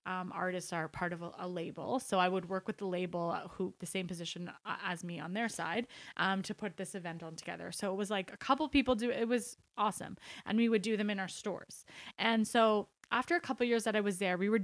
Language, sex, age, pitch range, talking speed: English, female, 20-39, 185-230 Hz, 260 wpm